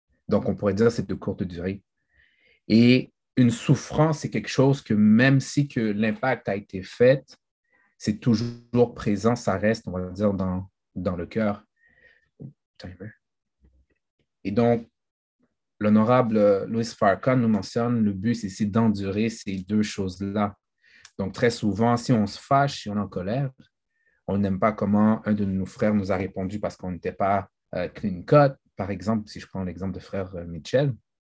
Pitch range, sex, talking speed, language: 95-120 Hz, male, 170 wpm, French